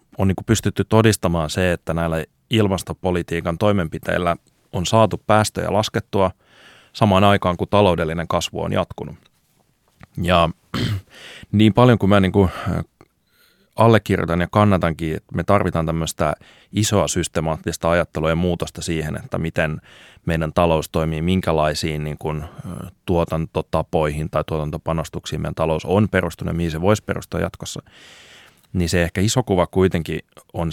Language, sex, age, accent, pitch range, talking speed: Finnish, male, 30-49, native, 80-100 Hz, 135 wpm